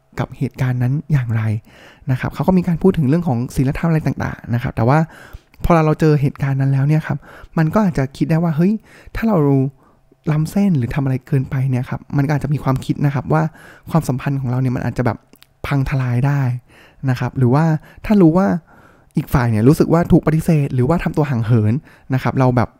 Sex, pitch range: male, 130-160 Hz